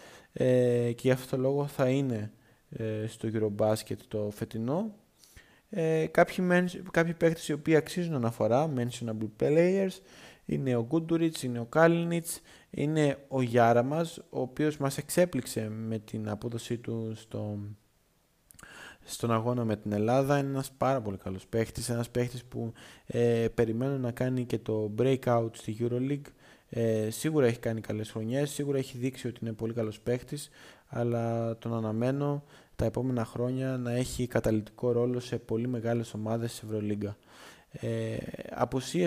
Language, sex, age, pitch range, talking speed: Greek, male, 20-39, 110-145 Hz, 145 wpm